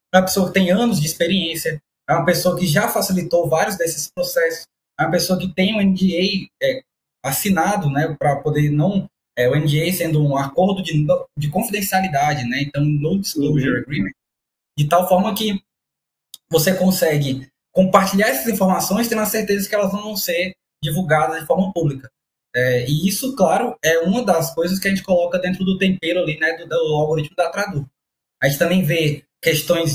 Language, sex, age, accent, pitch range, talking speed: English, male, 20-39, Brazilian, 150-190 Hz, 175 wpm